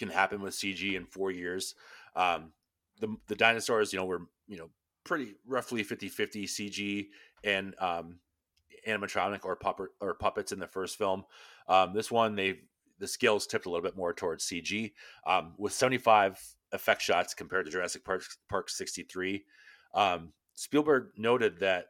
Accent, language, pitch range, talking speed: American, English, 95-120 Hz, 170 wpm